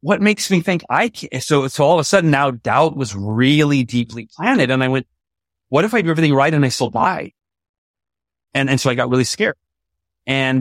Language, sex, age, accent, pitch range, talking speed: English, male, 30-49, American, 120-150 Hz, 220 wpm